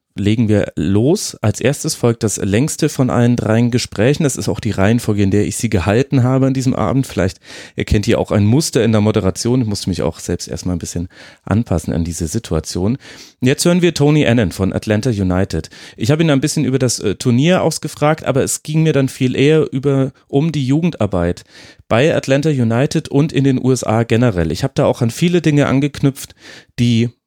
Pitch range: 105-140 Hz